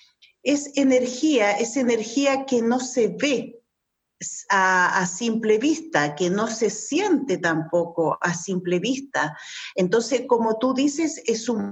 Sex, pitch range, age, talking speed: female, 185-265 Hz, 50-69, 135 wpm